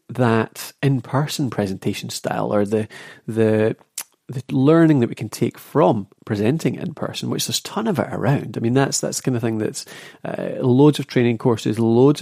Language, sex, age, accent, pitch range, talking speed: English, male, 30-49, British, 110-140 Hz, 190 wpm